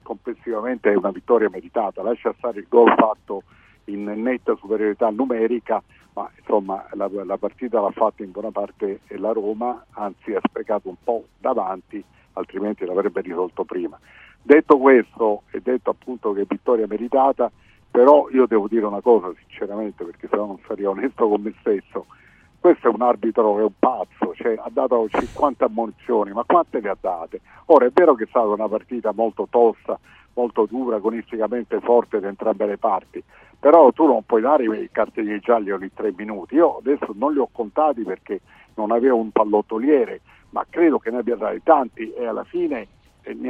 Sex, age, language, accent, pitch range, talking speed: male, 50-69, Italian, native, 105-125 Hz, 180 wpm